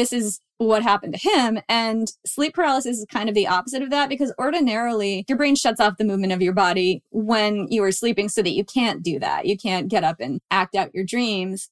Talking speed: 235 wpm